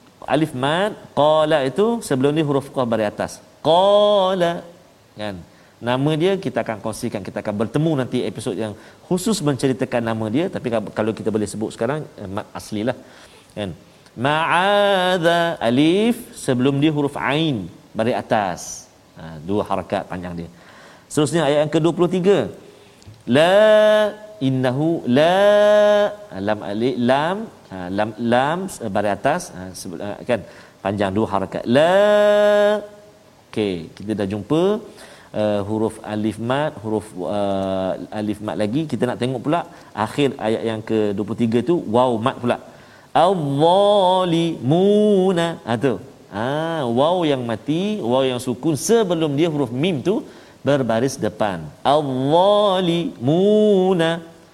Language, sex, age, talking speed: Malayalam, male, 40-59, 135 wpm